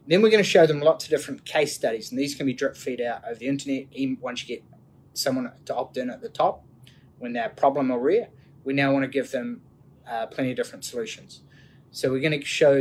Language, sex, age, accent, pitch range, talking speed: English, male, 20-39, Australian, 135-170 Hz, 250 wpm